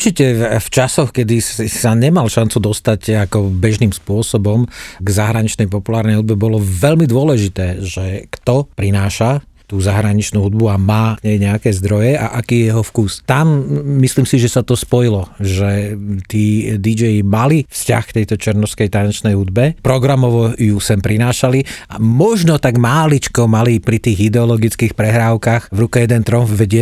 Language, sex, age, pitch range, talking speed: Slovak, male, 40-59, 110-125 Hz, 155 wpm